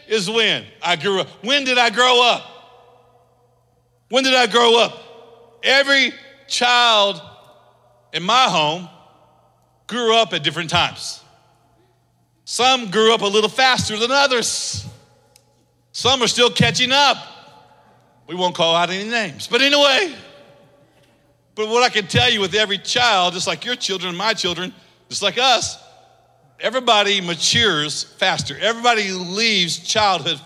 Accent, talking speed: American, 140 wpm